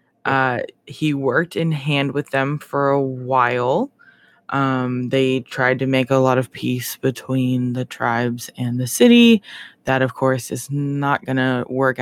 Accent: American